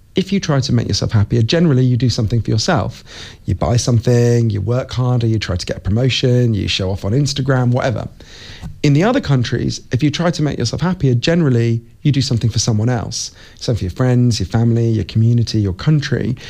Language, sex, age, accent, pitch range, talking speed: English, male, 40-59, British, 115-165 Hz, 215 wpm